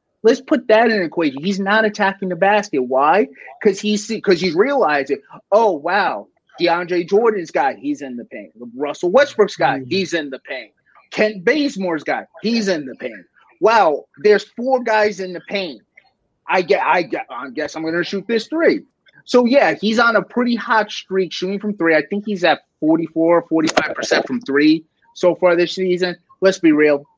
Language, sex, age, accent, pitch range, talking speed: English, male, 30-49, American, 155-210 Hz, 180 wpm